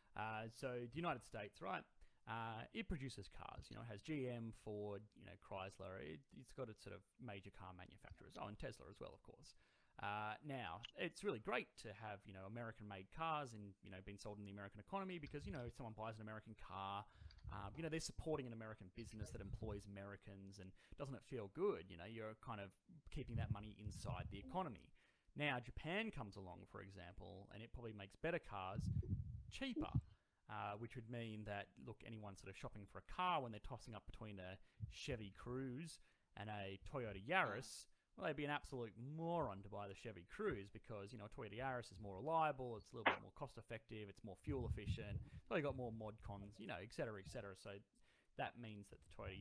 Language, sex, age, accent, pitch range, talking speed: English, male, 30-49, Australian, 100-125 Hz, 210 wpm